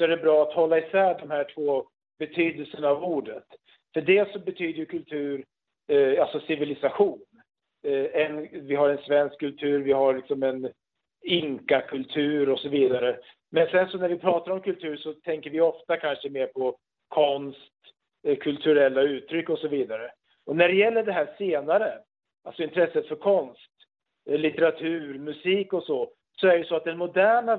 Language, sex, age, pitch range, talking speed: Swedish, male, 50-69, 145-190 Hz, 180 wpm